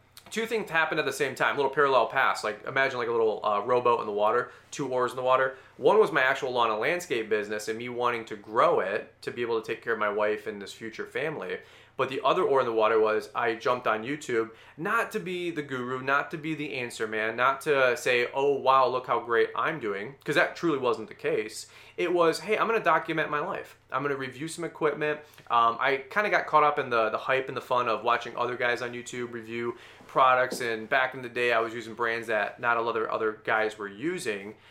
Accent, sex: American, male